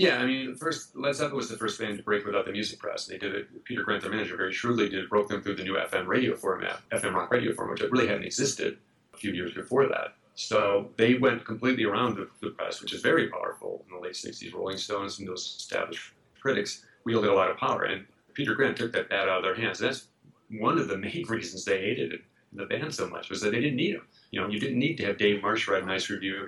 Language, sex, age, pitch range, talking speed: English, male, 40-59, 100-125 Hz, 270 wpm